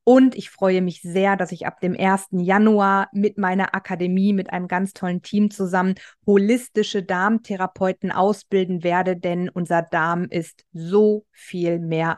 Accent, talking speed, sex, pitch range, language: German, 155 wpm, female, 185-215 Hz, German